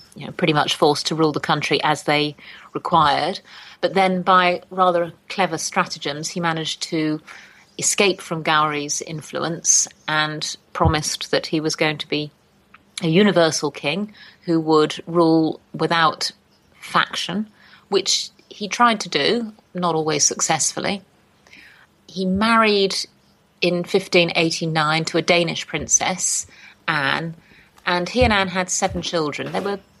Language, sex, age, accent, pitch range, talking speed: English, female, 30-49, British, 155-190 Hz, 130 wpm